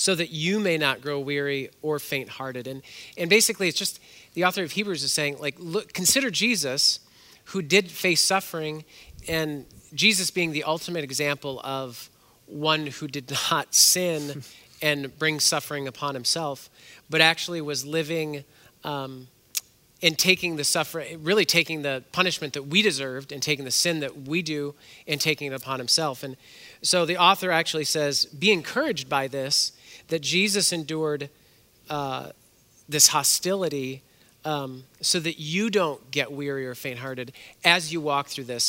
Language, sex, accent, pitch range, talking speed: English, male, American, 140-170 Hz, 160 wpm